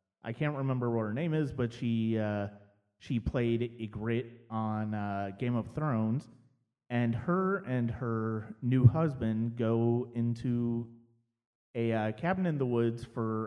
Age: 30-49